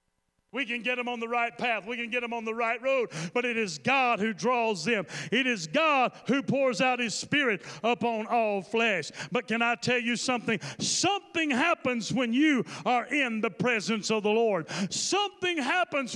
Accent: American